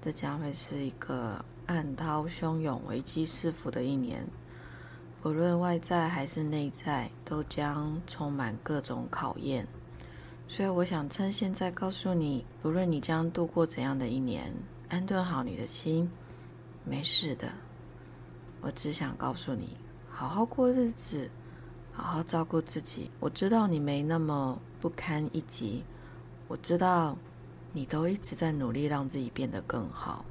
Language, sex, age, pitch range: Chinese, female, 20-39, 140-185 Hz